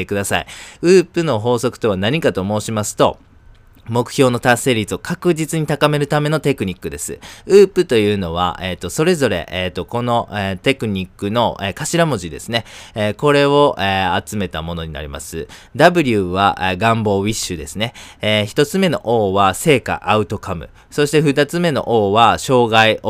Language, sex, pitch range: Japanese, male, 95-145 Hz